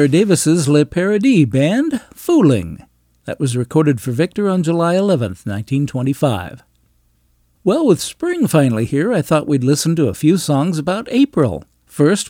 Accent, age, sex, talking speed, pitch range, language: American, 60-79, male, 145 wpm, 120-170 Hz, English